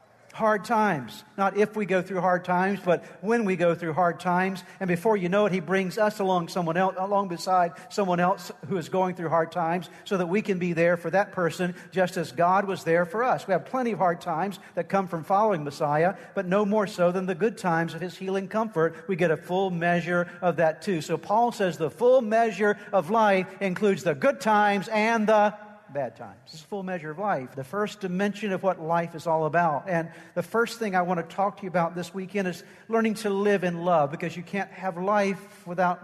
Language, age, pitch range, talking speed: English, 50-69, 175-205 Hz, 235 wpm